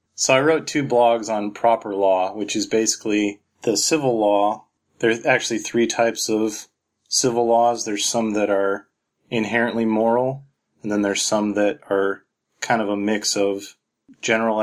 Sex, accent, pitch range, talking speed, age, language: male, American, 100-115 Hz, 160 wpm, 20-39, English